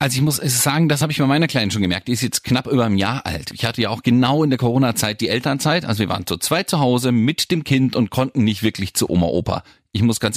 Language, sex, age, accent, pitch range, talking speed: German, male, 40-59, German, 110-155 Hz, 295 wpm